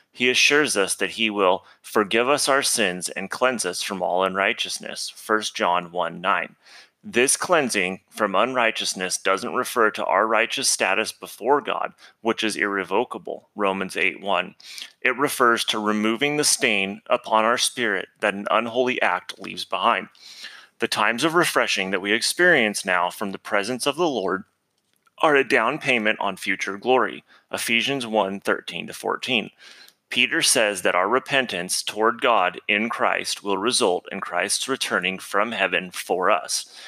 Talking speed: 150 wpm